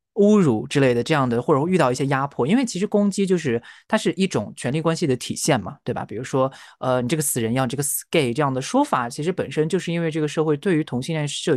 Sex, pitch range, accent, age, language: male, 140-210 Hz, native, 20-39, Chinese